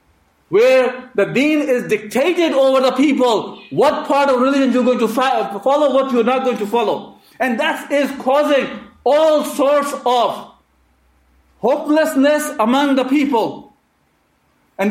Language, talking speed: English, 135 wpm